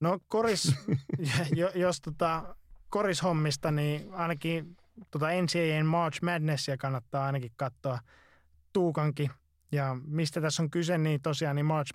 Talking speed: 120 wpm